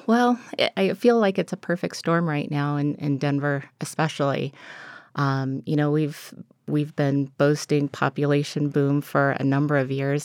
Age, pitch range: 30-49, 140-165 Hz